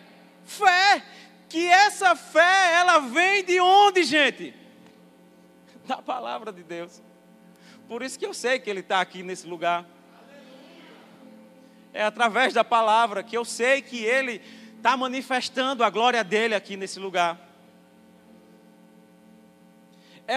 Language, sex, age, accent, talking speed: Portuguese, male, 40-59, Brazilian, 125 wpm